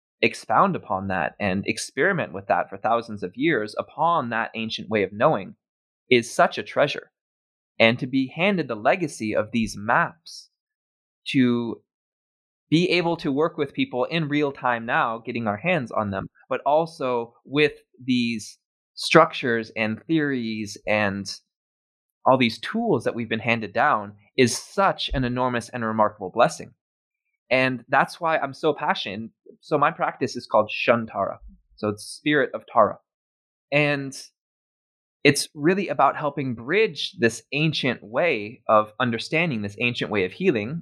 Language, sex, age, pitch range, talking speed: English, male, 20-39, 105-145 Hz, 150 wpm